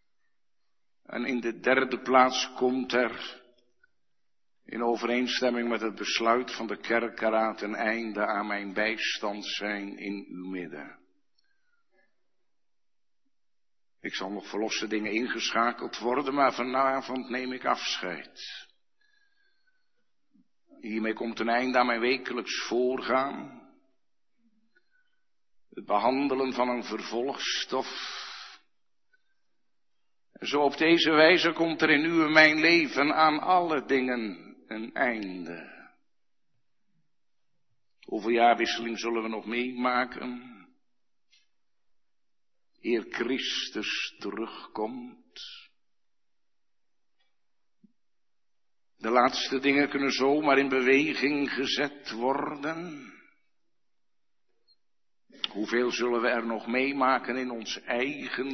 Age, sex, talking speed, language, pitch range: 50-69, male, 95 wpm, Dutch, 120-170 Hz